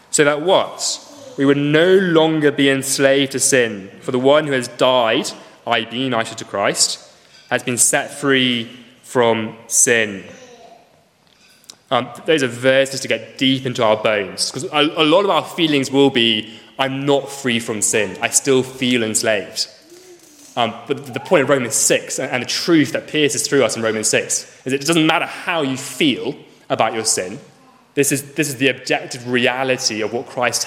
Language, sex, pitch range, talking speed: English, male, 120-150 Hz, 180 wpm